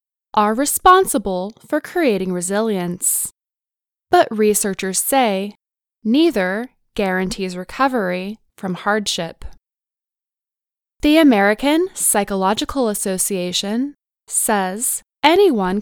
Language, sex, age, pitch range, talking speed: English, female, 10-29, 195-285 Hz, 70 wpm